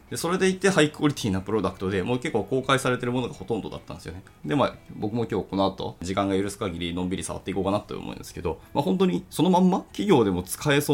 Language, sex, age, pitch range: Japanese, male, 20-39, 95-130 Hz